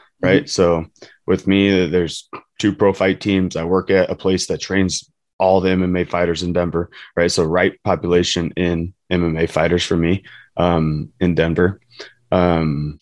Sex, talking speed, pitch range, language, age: male, 160 wpm, 85-95 Hz, English, 20-39